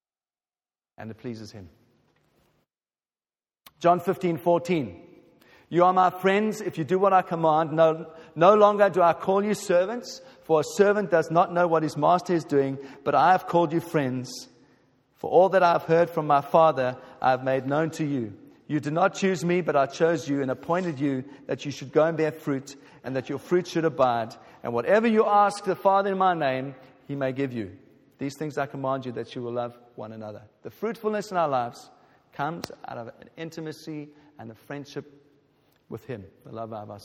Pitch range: 140-195 Hz